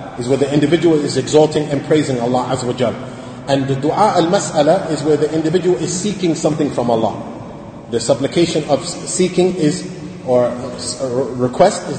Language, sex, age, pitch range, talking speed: English, male, 30-49, 130-165 Hz, 160 wpm